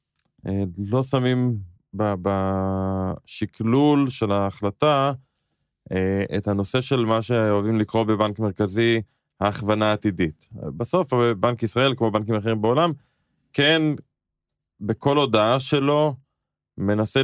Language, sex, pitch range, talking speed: Hebrew, male, 105-145 Hz, 95 wpm